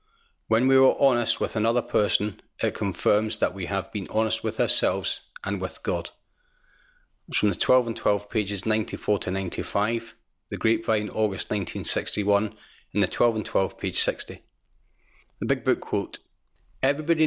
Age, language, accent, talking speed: 40-59, English, British, 155 wpm